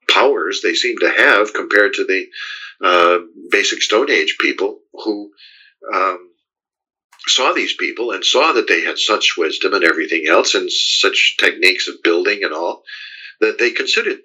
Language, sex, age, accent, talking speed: English, male, 60-79, American, 155 wpm